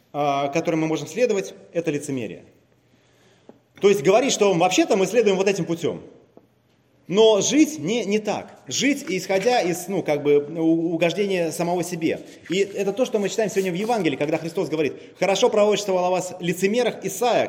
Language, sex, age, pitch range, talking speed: Russian, male, 30-49, 150-200 Hz, 165 wpm